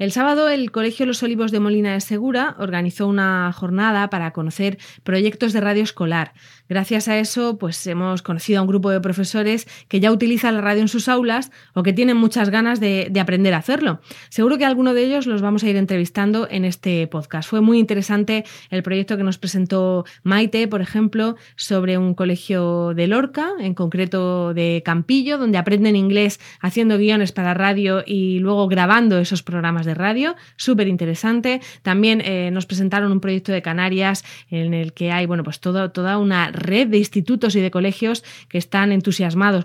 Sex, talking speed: female, 190 wpm